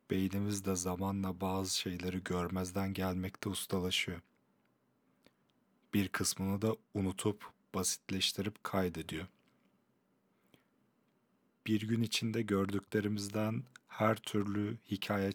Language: Turkish